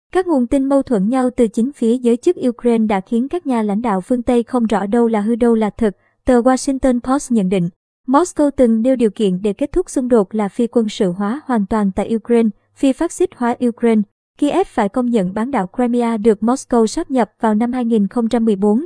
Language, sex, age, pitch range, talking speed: Vietnamese, male, 20-39, 215-255 Hz, 225 wpm